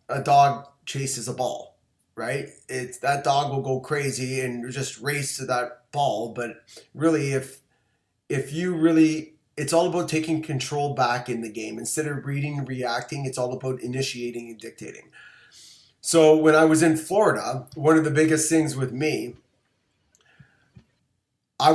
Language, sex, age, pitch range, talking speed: English, male, 30-49, 120-150 Hz, 160 wpm